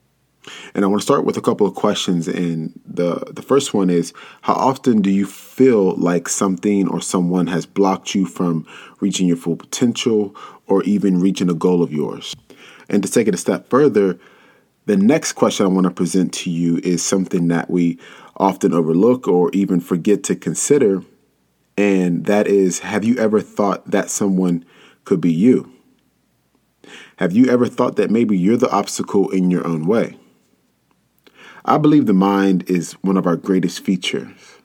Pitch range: 85-100 Hz